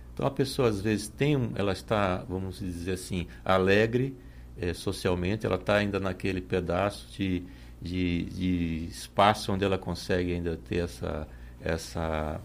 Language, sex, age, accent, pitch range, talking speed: Portuguese, male, 60-79, Brazilian, 90-115 Hz, 145 wpm